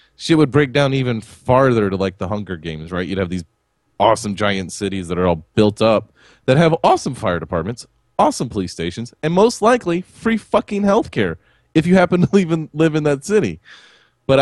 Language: English